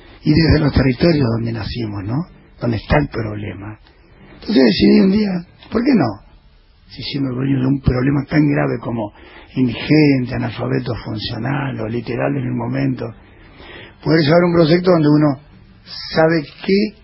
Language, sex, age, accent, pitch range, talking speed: Spanish, male, 40-59, Argentinian, 120-155 Hz, 155 wpm